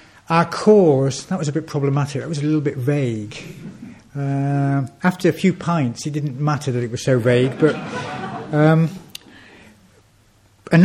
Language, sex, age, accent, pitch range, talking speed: English, male, 60-79, British, 125-165 Hz, 160 wpm